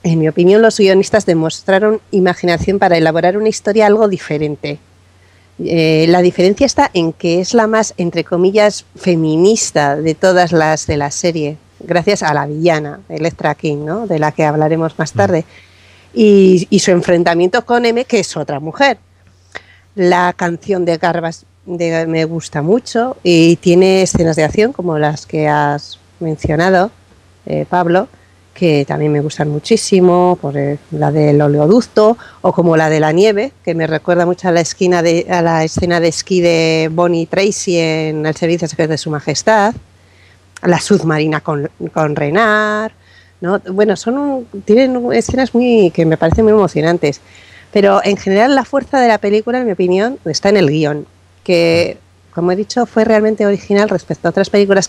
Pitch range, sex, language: 155-200 Hz, female, Spanish